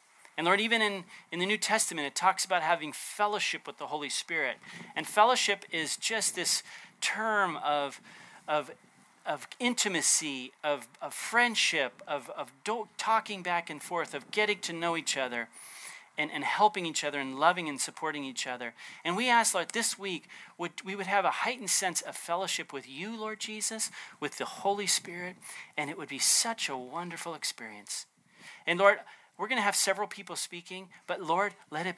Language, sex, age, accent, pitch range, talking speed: English, male, 40-59, American, 145-200 Hz, 180 wpm